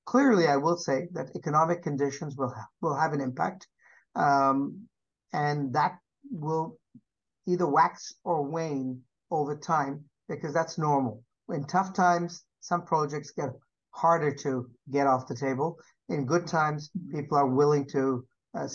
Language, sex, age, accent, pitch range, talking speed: English, male, 60-79, American, 140-175 Hz, 145 wpm